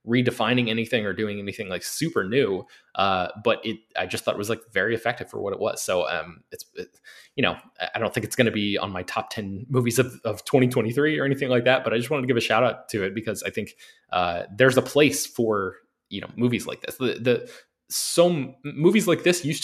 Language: English